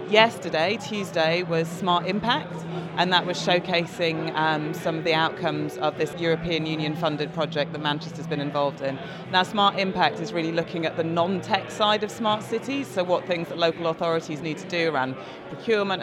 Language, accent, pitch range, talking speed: English, British, 155-180 Hz, 180 wpm